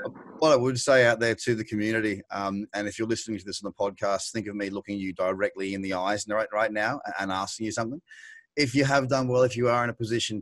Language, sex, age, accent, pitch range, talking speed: English, male, 30-49, Australian, 105-125 Hz, 265 wpm